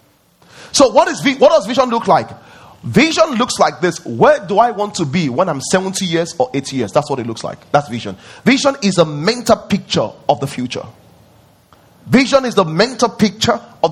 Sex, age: male, 30-49